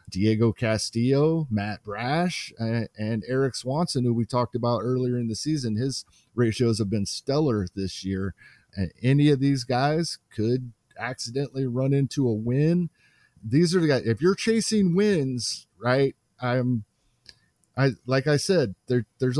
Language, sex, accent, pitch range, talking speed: English, male, American, 115-145 Hz, 150 wpm